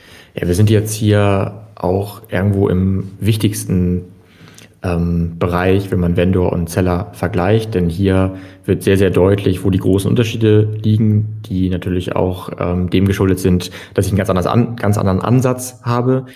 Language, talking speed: German, 165 wpm